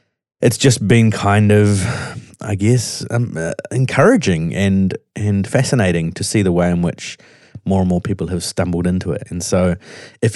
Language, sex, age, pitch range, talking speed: English, male, 30-49, 85-115 Hz, 175 wpm